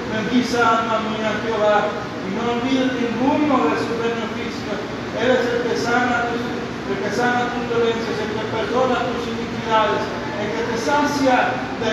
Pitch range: 205-235 Hz